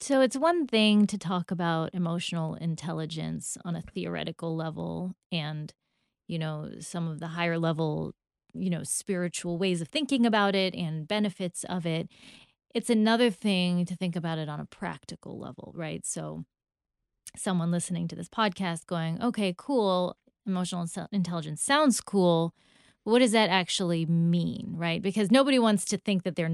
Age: 20-39